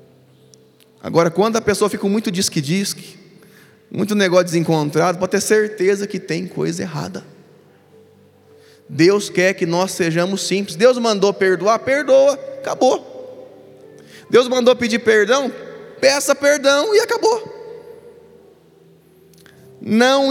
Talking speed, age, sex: 110 wpm, 20-39, male